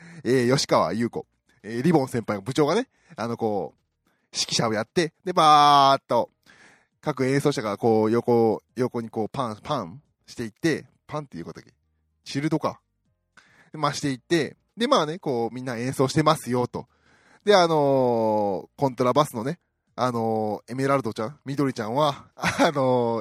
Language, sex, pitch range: Japanese, male, 115-160 Hz